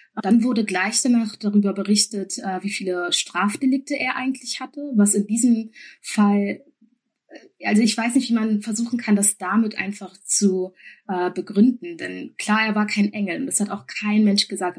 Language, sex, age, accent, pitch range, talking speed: German, female, 20-39, German, 190-220 Hz, 170 wpm